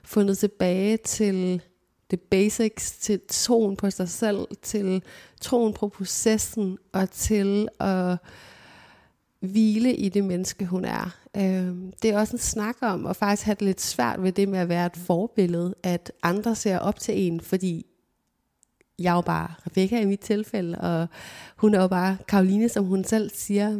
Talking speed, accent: 165 wpm, Danish